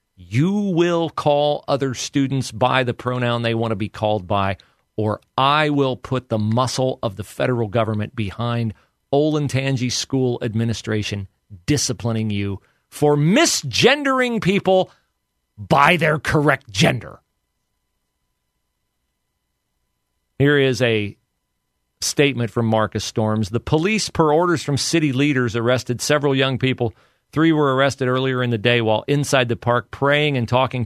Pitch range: 110-140 Hz